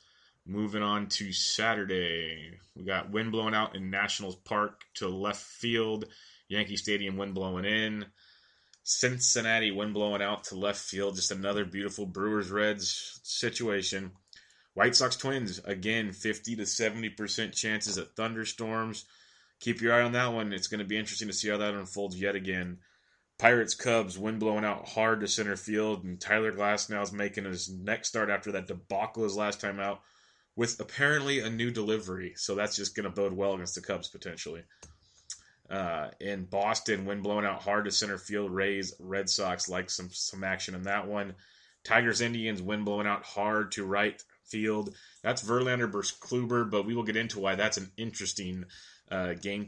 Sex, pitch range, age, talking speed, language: male, 100-110 Hz, 20-39, 175 wpm, English